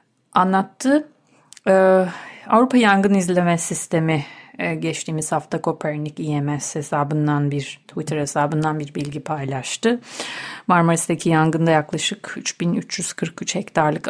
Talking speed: 95 wpm